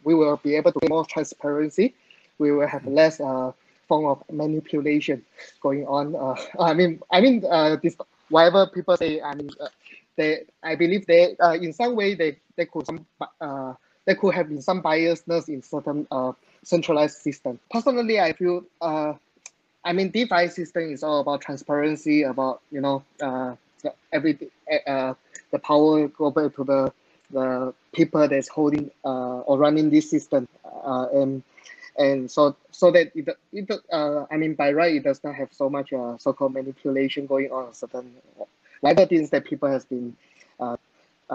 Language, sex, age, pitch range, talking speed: English, male, 20-39, 140-175 Hz, 175 wpm